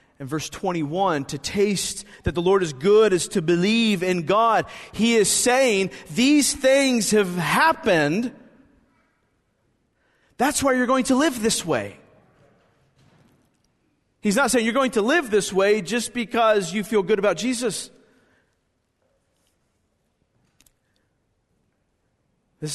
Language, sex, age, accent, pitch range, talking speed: English, male, 40-59, American, 170-250 Hz, 125 wpm